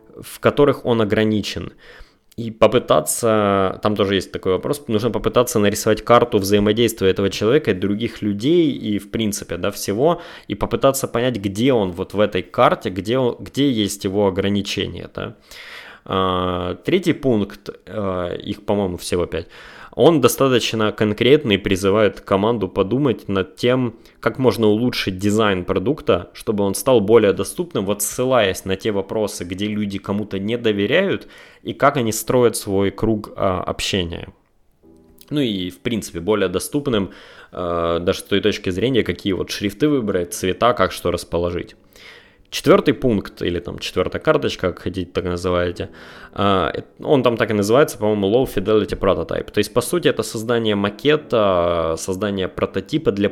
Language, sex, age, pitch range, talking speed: Russian, male, 20-39, 95-115 Hz, 150 wpm